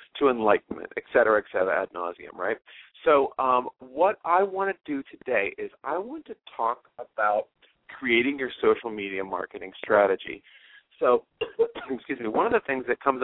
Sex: male